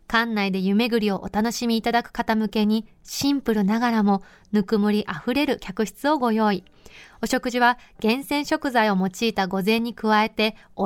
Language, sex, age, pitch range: Japanese, female, 20-39, 200-240 Hz